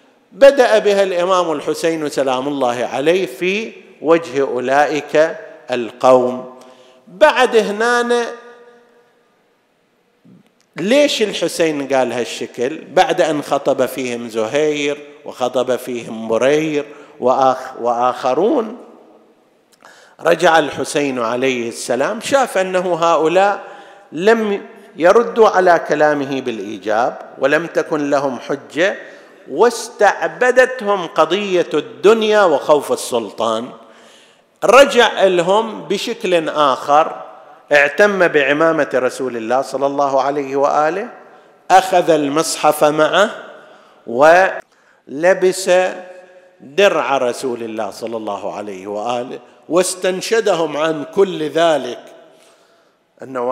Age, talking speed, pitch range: 50-69, 85 wpm, 135-195 Hz